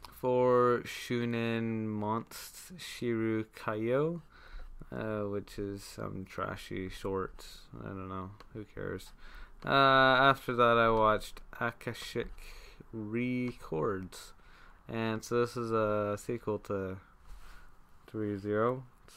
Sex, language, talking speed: male, English, 95 wpm